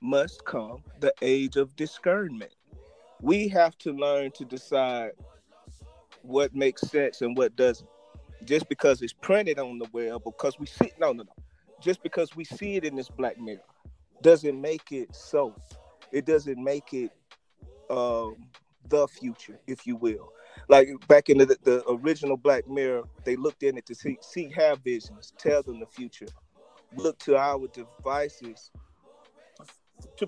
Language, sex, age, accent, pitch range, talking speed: English, male, 30-49, American, 135-190 Hz, 160 wpm